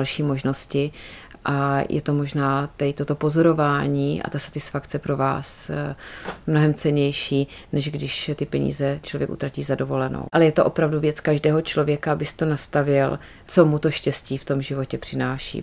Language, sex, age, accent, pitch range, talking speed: Czech, female, 30-49, native, 130-145 Hz, 155 wpm